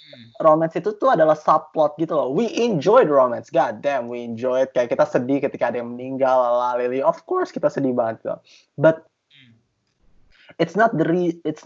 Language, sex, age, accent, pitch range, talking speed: Indonesian, male, 20-39, native, 125-170 Hz, 180 wpm